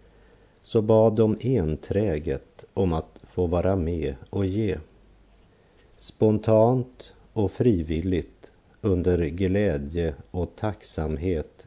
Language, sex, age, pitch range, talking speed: German, male, 50-69, 85-105 Hz, 95 wpm